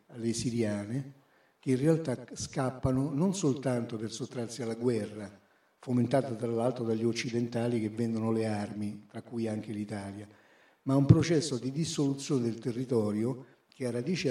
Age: 50-69